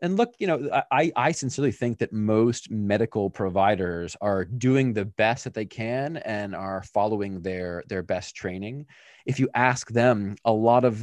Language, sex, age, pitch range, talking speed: English, male, 20-39, 95-125 Hz, 180 wpm